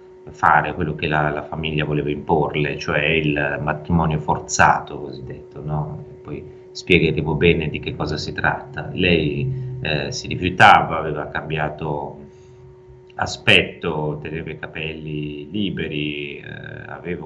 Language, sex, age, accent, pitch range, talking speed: Italian, male, 30-49, native, 75-95 Hz, 120 wpm